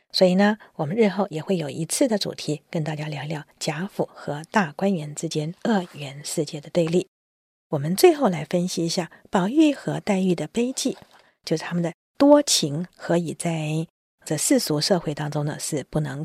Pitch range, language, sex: 155-210 Hz, Chinese, female